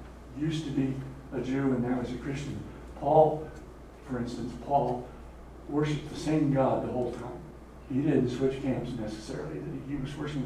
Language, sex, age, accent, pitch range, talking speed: English, male, 60-79, American, 120-150 Hz, 170 wpm